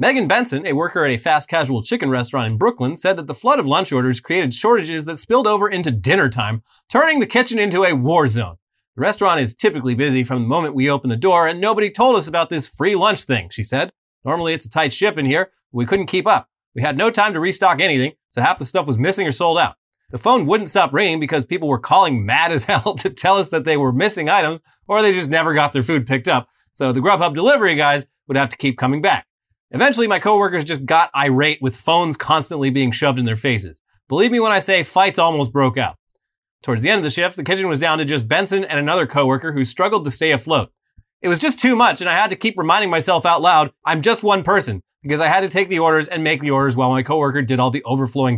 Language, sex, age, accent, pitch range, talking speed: English, male, 30-49, American, 130-185 Hz, 255 wpm